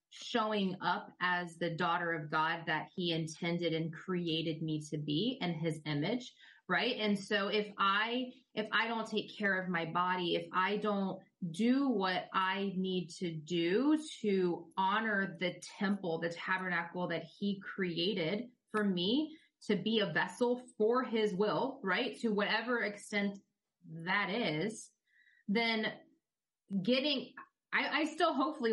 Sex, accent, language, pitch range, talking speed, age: female, American, English, 185-225 Hz, 145 wpm, 20-39